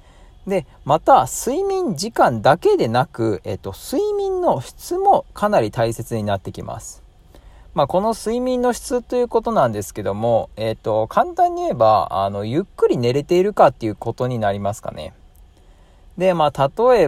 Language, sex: Japanese, male